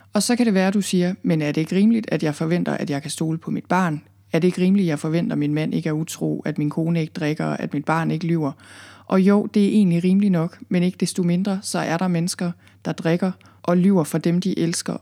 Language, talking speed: Danish, 270 wpm